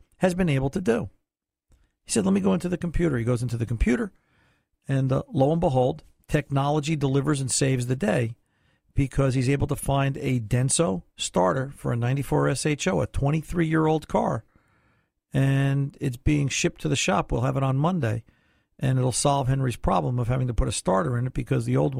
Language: English